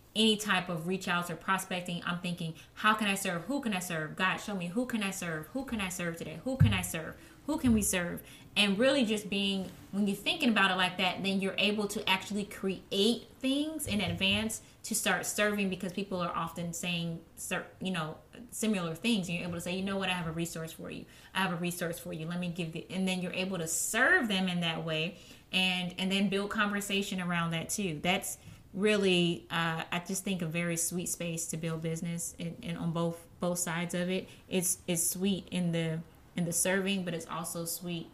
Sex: female